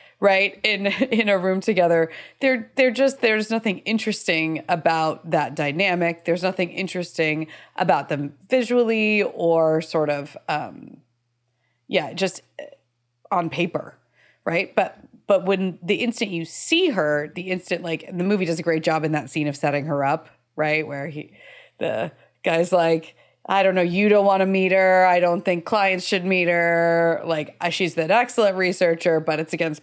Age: 30-49